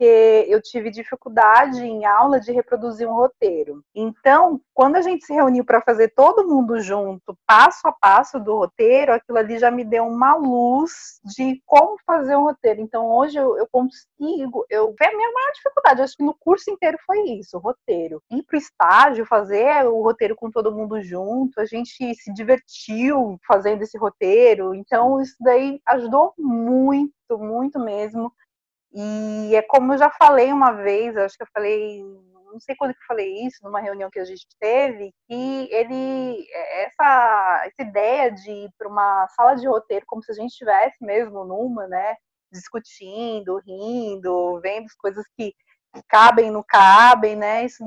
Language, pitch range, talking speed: Portuguese, 215-270 Hz, 170 wpm